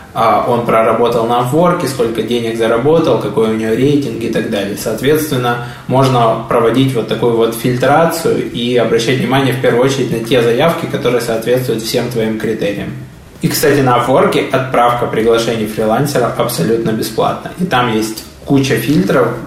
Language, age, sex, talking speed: Russian, 20-39, male, 150 wpm